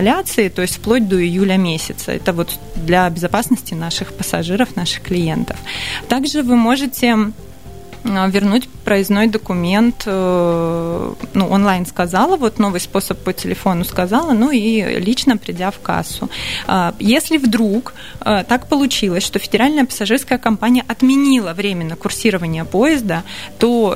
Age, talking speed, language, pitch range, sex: 20-39, 120 wpm, Russian, 180-230 Hz, female